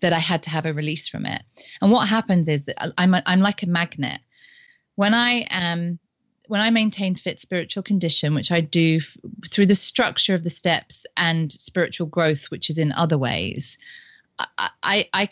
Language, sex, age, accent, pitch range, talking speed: English, female, 30-49, British, 155-195 Hz, 200 wpm